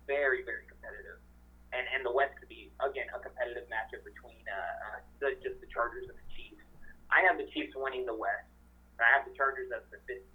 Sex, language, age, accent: male, English, 30-49, American